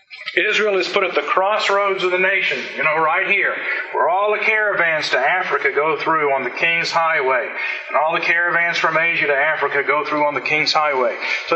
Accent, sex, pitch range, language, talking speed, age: American, male, 165-210 Hz, English, 210 wpm, 50-69